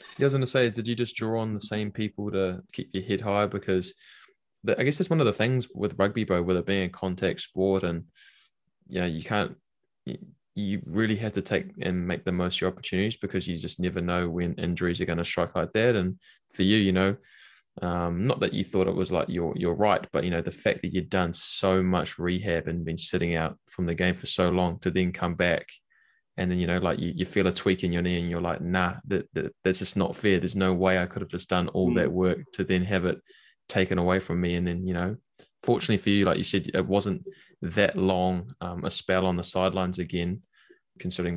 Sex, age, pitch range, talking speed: male, 20-39, 90-100 Hz, 250 wpm